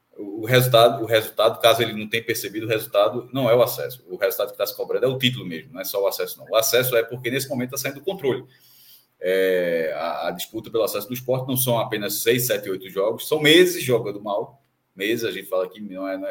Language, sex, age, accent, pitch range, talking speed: Portuguese, male, 20-39, Brazilian, 120-190 Hz, 250 wpm